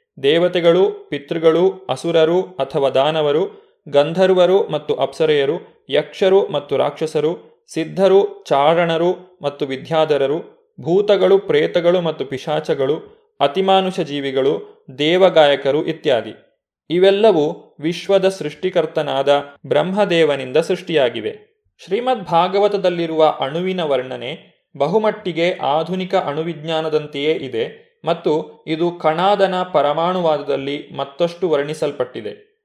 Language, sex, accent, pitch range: Kannada, male, native, 155-205 Hz